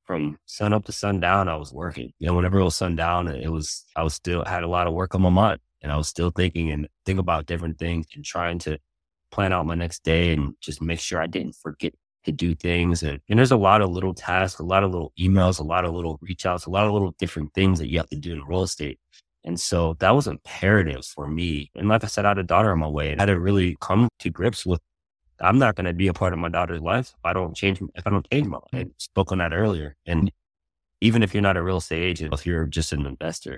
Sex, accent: male, American